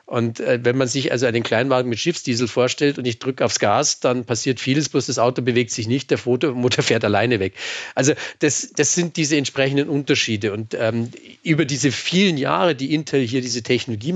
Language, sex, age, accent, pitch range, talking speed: German, male, 40-59, German, 110-135 Hz, 200 wpm